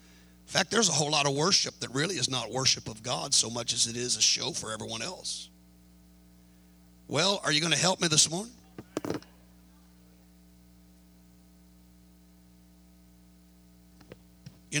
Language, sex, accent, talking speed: English, male, American, 140 wpm